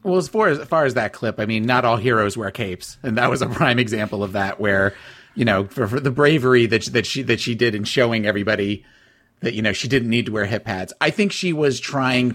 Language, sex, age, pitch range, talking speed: English, male, 30-49, 105-135 Hz, 270 wpm